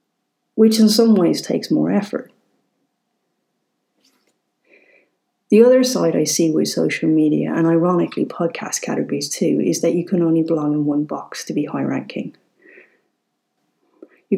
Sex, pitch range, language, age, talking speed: female, 155-190 Hz, English, 40-59, 140 wpm